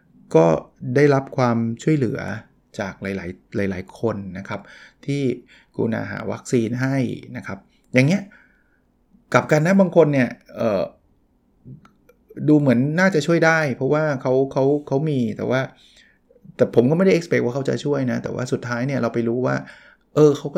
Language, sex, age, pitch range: Thai, male, 20-39, 120-145 Hz